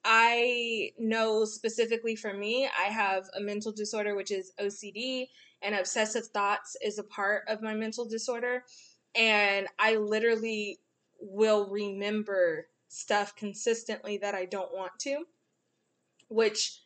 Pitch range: 200-240 Hz